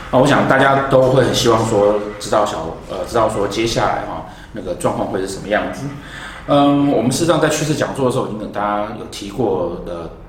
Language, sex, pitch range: Chinese, male, 90-120 Hz